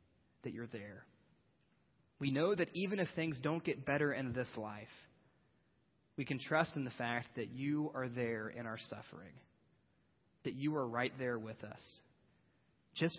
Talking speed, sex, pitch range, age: 165 wpm, male, 115-140 Hz, 30-49